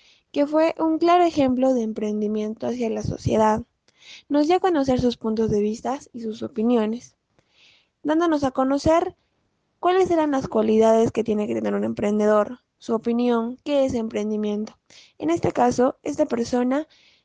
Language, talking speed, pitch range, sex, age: Spanish, 155 wpm, 215-255 Hz, female, 20-39